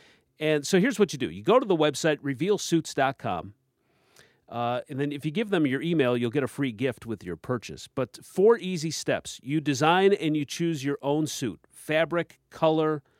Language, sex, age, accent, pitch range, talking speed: English, male, 40-59, American, 125-165 Hz, 190 wpm